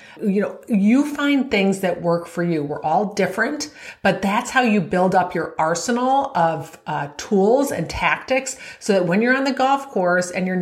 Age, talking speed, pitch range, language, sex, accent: 40-59, 200 wpm, 180-225 Hz, English, female, American